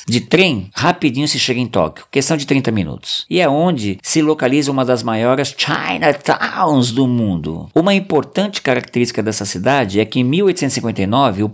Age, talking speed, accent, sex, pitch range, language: 50-69, 160 wpm, Brazilian, male, 105-140 Hz, Portuguese